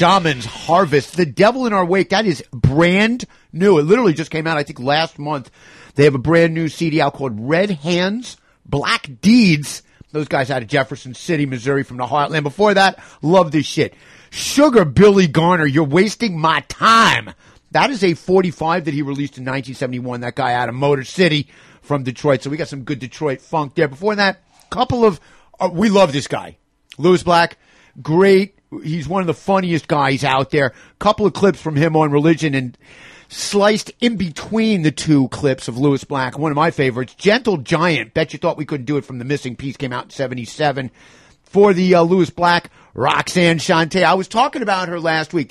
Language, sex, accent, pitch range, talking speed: English, male, American, 140-180 Hz, 200 wpm